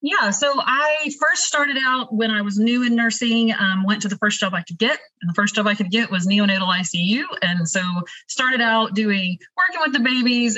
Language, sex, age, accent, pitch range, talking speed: English, female, 30-49, American, 190-235 Hz, 225 wpm